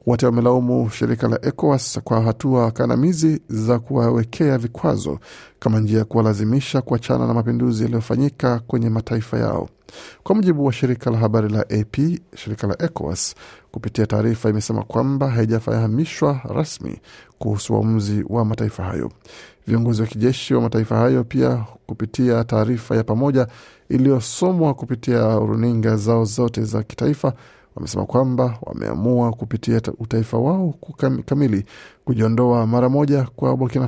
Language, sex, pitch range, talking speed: Swahili, male, 110-130 Hz, 130 wpm